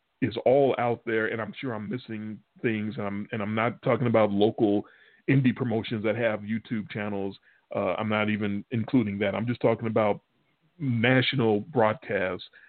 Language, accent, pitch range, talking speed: English, American, 105-120 Hz, 170 wpm